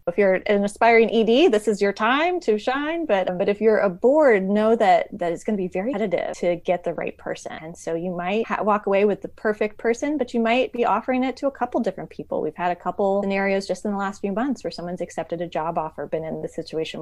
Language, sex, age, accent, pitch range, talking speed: English, female, 20-39, American, 175-230 Hz, 255 wpm